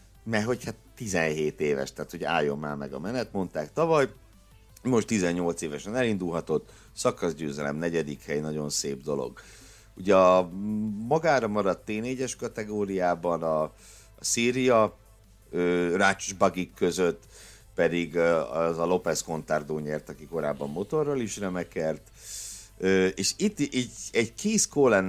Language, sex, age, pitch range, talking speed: Hungarian, male, 60-79, 85-110 Hz, 120 wpm